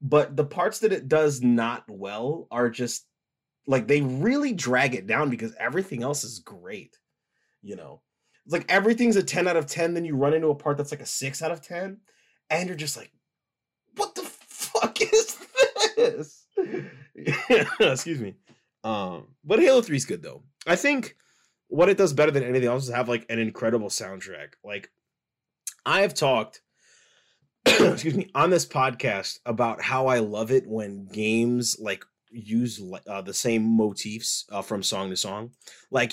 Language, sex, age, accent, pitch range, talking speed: English, male, 20-39, American, 105-150 Hz, 175 wpm